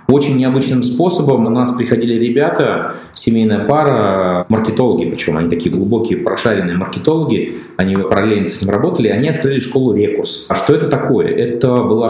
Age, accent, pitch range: 20-39, native, 105-125 Hz